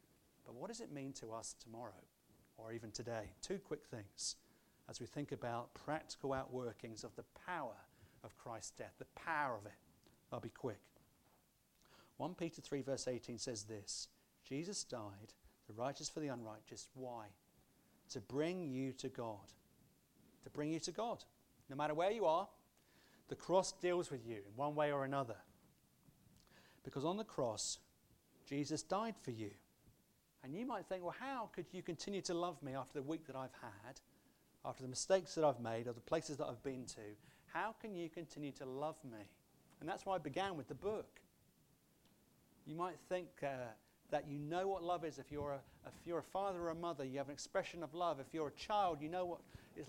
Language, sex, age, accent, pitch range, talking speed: English, male, 40-59, British, 120-170 Hz, 190 wpm